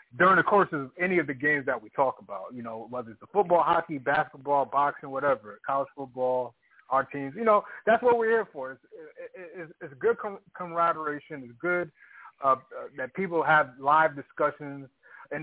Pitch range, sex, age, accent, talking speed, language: 130-170 Hz, male, 30-49, American, 190 wpm, English